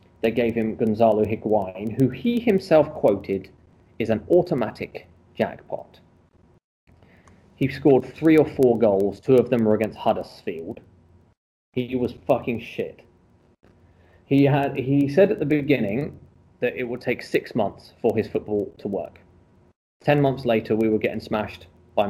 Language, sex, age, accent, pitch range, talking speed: English, male, 30-49, British, 110-140 Hz, 145 wpm